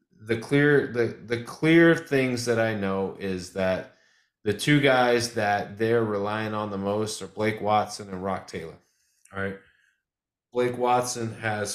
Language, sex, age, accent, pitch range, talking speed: English, male, 30-49, American, 100-115 Hz, 160 wpm